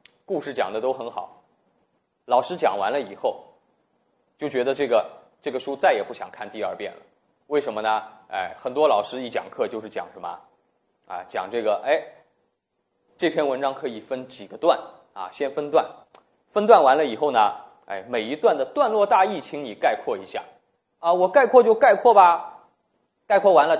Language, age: Chinese, 20-39